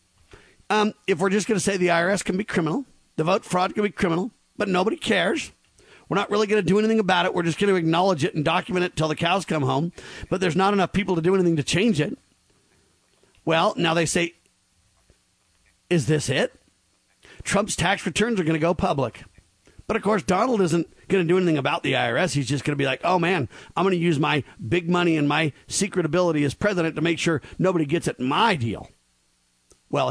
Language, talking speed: English, 225 wpm